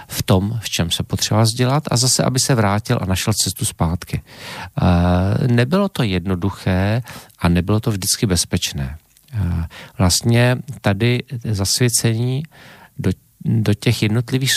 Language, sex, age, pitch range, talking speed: Slovak, male, 40-59, 100-125 Hz, 130 wpm